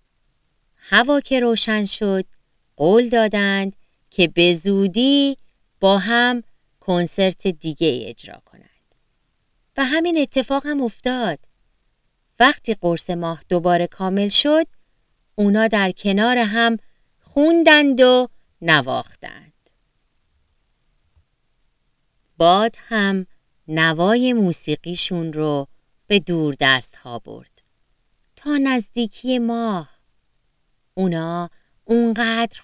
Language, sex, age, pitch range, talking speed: Persian, female, 30-49, 155-230 Hz, 90 wpm